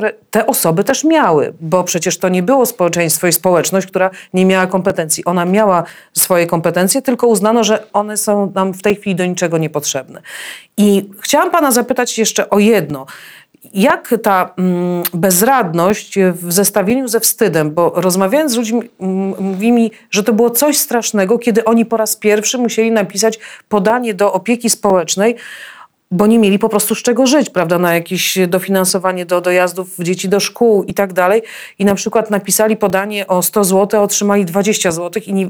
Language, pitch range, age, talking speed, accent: Polish, 185-225 Hz, 40-59, 170 wpm, native